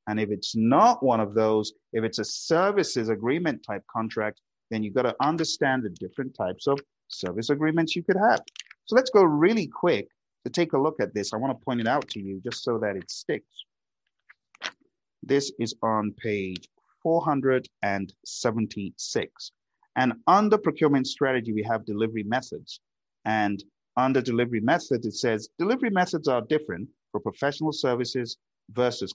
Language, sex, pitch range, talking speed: English, male, 105-140 Hz, 165 wpm